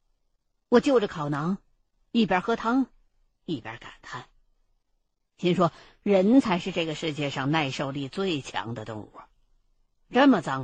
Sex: female